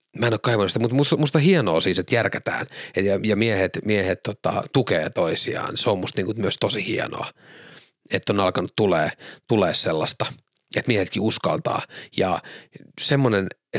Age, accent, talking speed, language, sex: 30-49, native, 145 wpm, Finnish, male